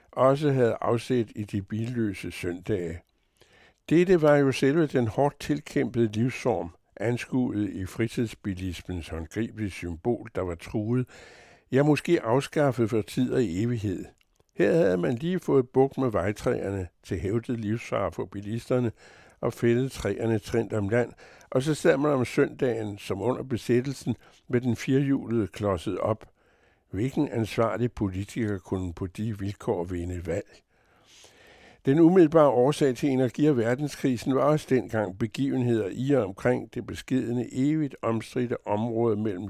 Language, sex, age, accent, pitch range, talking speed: Danish, male, 60-79, American, 105-130 Hz, 140 wpm